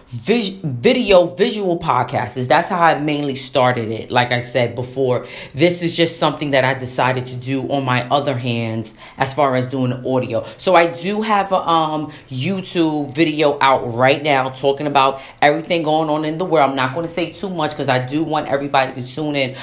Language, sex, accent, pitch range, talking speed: English, female, American, 130-165 Hz, 200 wpm